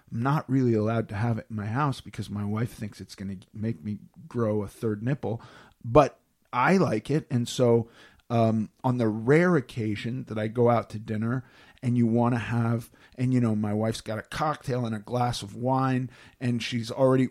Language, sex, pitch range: English, male, 115-140 Hz